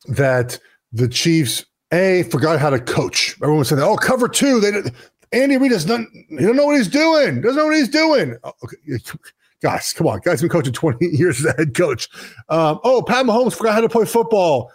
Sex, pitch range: male, 160-230 Hz